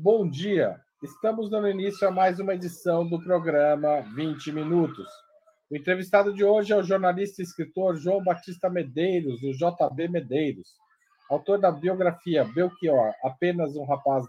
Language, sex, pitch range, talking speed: Portuguese, male, 150-195 Hz, 145 wpm